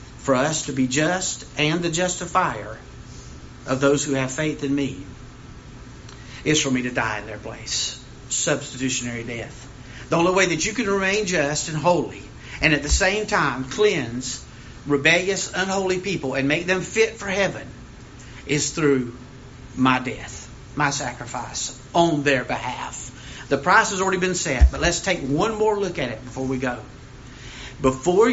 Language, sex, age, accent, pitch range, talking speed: English, male, 50-69, American, 125-155 Hz, 165 wpm